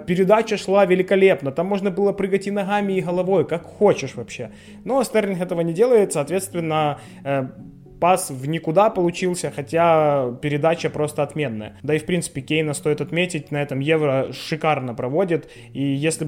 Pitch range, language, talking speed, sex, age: 150-190 Hz, Ukrainian, 160 wpm, male, 20-39